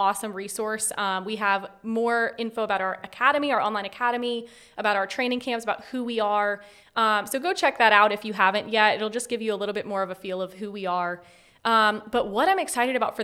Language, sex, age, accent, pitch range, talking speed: English, female, 20-39, American, 200-240 Hz, 240 wpm